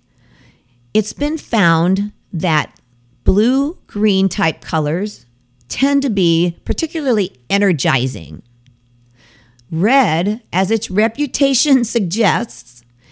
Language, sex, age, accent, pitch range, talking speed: English, female, 50-69, American, 140-230 Hz, 80 wpm